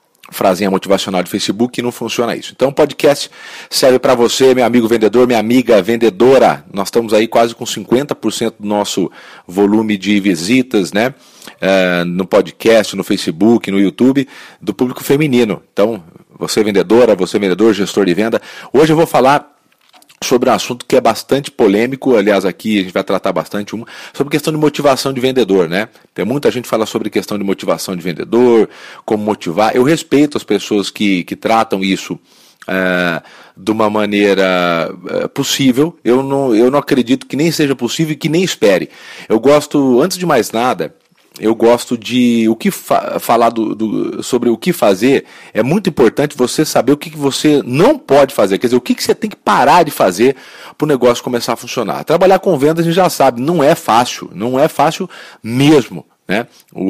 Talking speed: 190 wpm